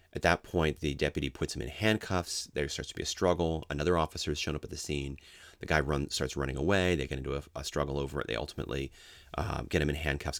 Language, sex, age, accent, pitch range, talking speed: English, male, 30-49, American, 75-90 Hz, 255 wpm